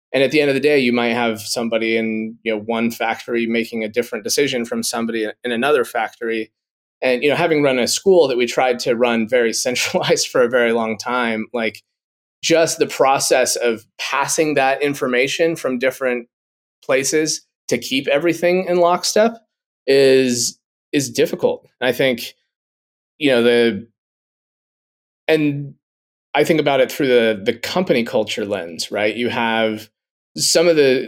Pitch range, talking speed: 110-135 Hz, 165 wpm